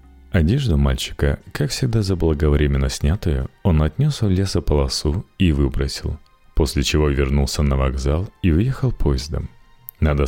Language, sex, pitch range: Russian, male, 70-95 Hz